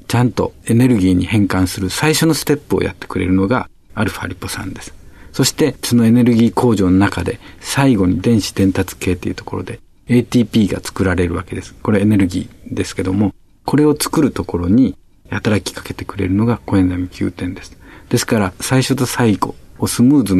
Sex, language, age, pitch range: male, Japanese, 50-69, 95-115 Hz